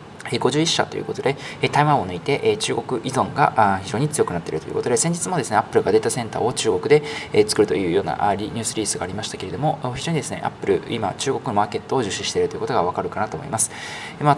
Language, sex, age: Japanese, male, 20-39